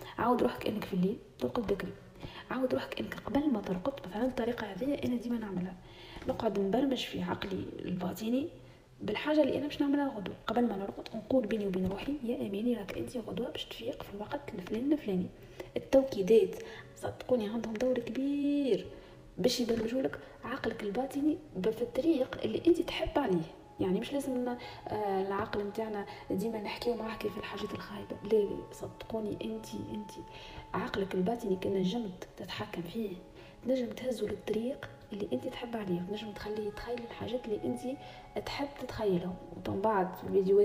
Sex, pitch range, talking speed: female, 200-260 Hz, 150 wpm